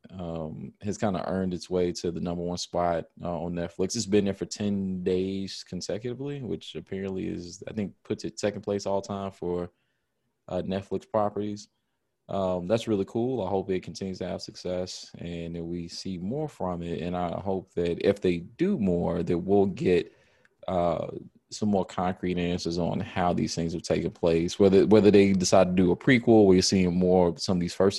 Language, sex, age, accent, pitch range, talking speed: English, male, 20-39, American, 90-105 Hz, 200 wpm